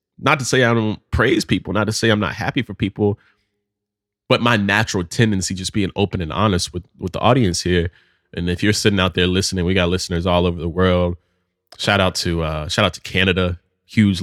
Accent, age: American, 20-39